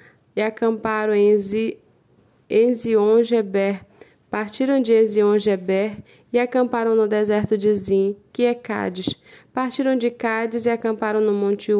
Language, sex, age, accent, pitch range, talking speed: Portuguese, female, 10-29, Brazilian, 205-235 Hz, 115 wpm